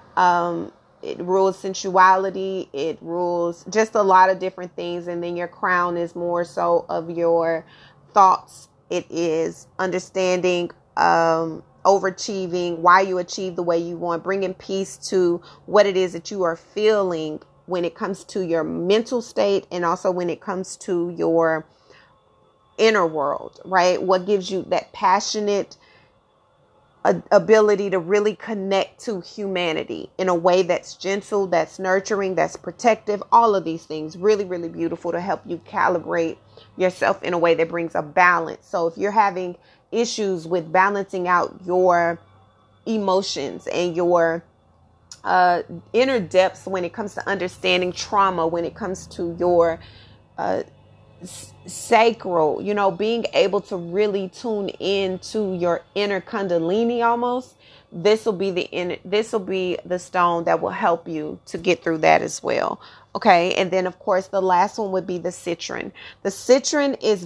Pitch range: 170-195 Hz